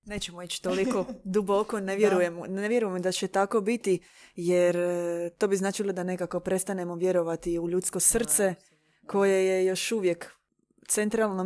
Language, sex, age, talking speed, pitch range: Croatian, female, 20-39, 140 wpm, 180-215 Hz